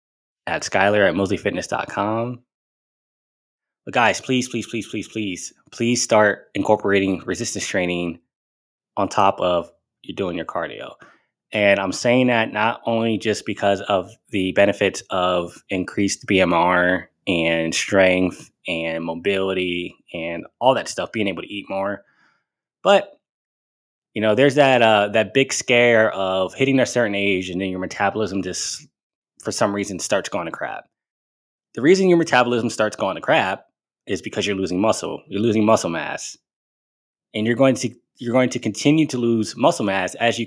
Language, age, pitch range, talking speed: English, 20-39, 95-125 Hz, 160 wpm